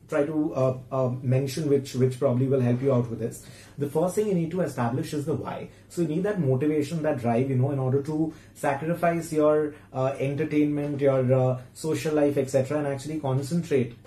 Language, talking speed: English, 205 wpm